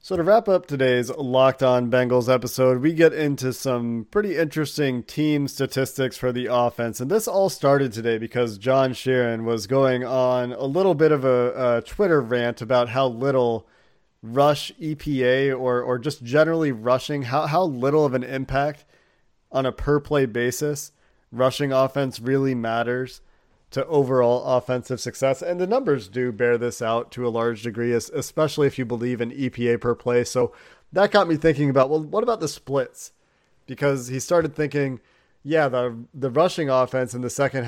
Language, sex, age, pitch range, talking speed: English, male, 40-59, 125-145 Hz, 175 wpm